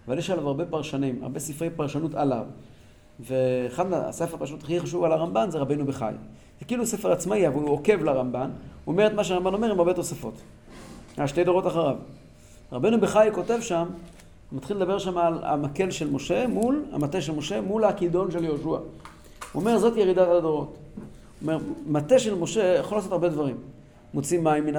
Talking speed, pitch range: 180 wpm, 145-195 Hz